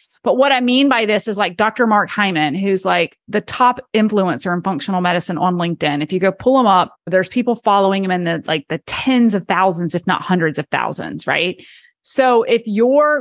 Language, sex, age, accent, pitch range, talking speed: English, female, 30-49, American, 195-250 Hz, 215 wpm